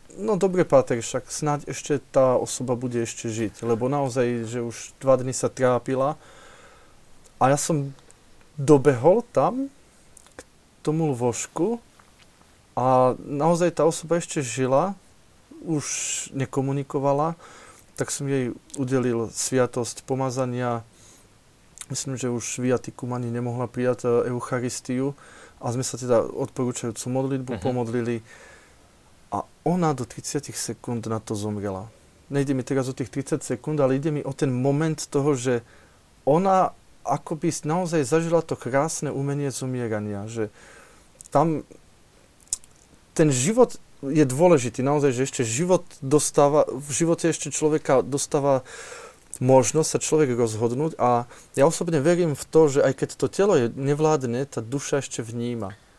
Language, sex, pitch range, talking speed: Slovak, male, 120-150 Hz, 135 wpm